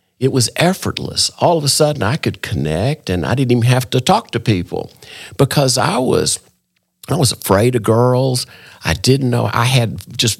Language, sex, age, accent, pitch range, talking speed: English, male, 50-69, American, 100-125 Hz, 190 wpm